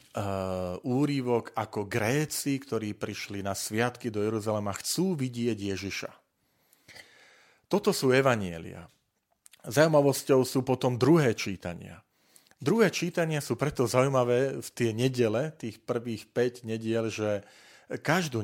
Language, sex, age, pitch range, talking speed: Slovak, male, 40-59, 100-130 Hz, 115 wpm